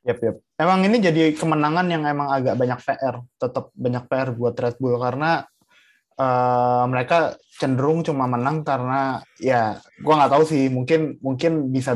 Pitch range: 120-150 Hz